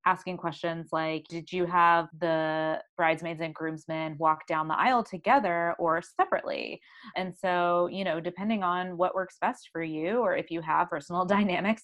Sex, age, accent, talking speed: female, 20-39, American, 170 wpm